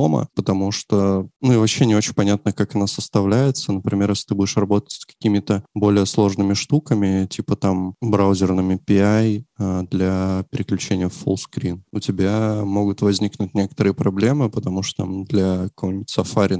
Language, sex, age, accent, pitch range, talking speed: Russian, male, 20-39, native, 95-105 Hz, 150 wpm